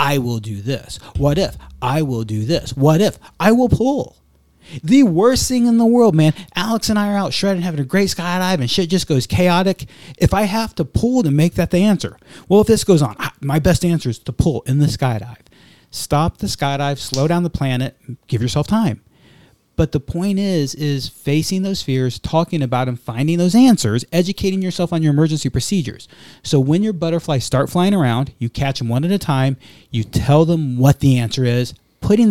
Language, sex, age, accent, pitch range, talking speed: English, male, 40-59, American, 120-165 Hz, 210 wpm